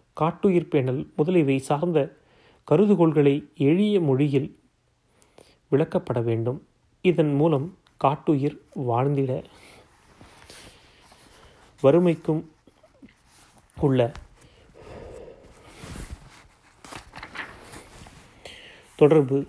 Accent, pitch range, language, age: native, 135-170 Hz, Tamil, 30-49